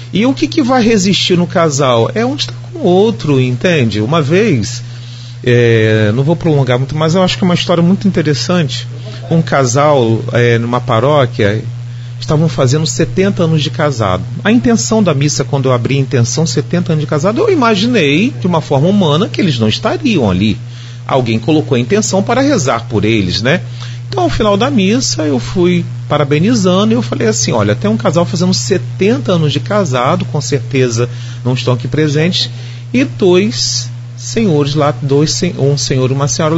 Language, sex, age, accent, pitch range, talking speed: Portuguese, male, 40-59, Brazilian, 120-165 Hz, 185 wpm